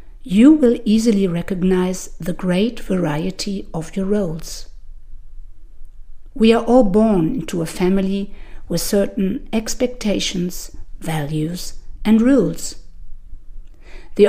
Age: 50-69